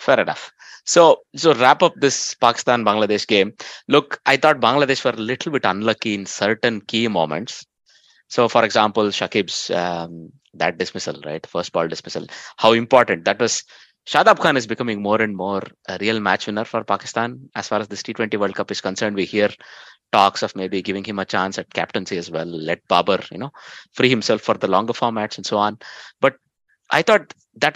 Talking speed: 190 wpm